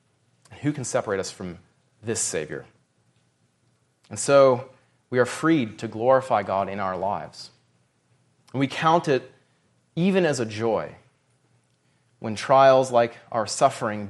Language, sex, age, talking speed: English, male, 30-49, 130 wpm